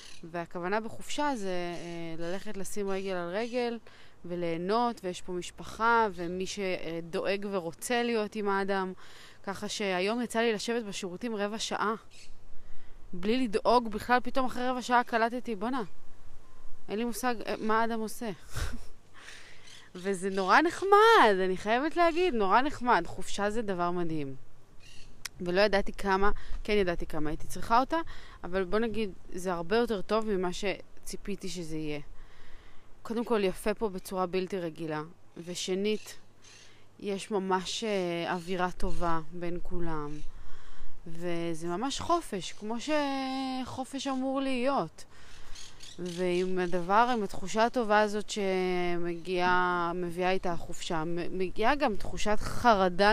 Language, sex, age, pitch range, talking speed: Hebrew, female, 20-39, 170-225 Hz, 120 wpm